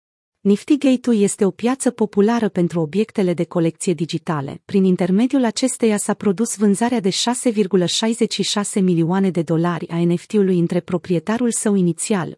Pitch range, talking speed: 175-225 Hz, 130 wpm